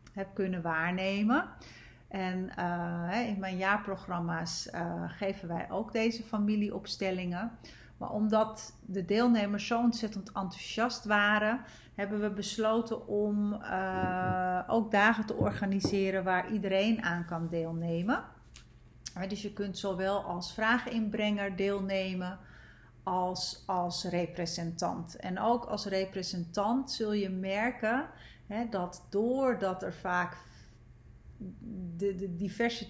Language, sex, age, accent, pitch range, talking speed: Dutch, female, 40-59, Dutch, 180-210 Hz, 110 wpm